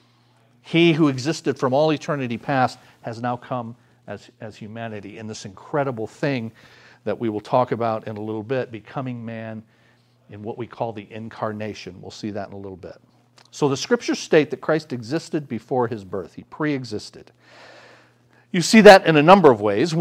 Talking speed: 185 wpm